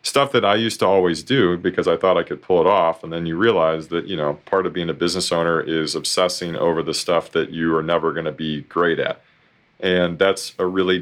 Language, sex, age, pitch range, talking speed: English, male, 30-49, 85-95 Hz, 250 wpm